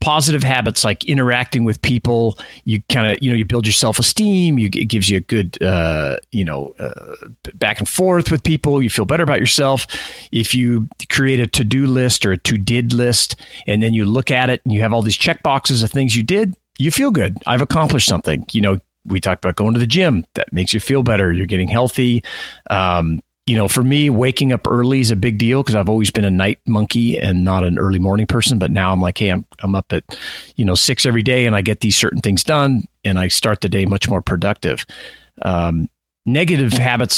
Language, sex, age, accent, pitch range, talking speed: English, male, 40-59, American, 100-130 Hz, 235 wpm